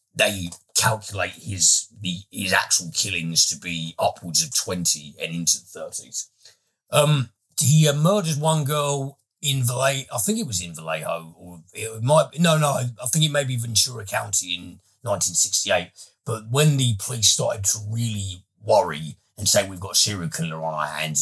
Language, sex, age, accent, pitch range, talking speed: English, male, 40-59, British, 90-130 Hz, 185 wpm